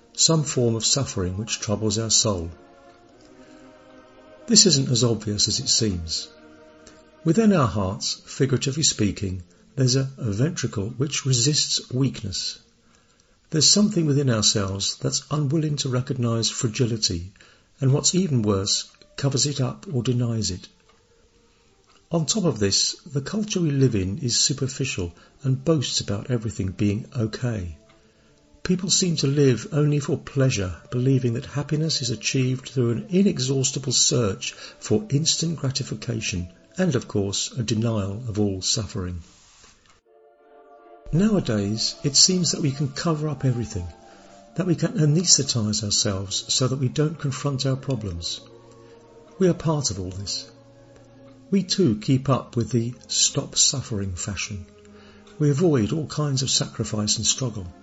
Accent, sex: British, male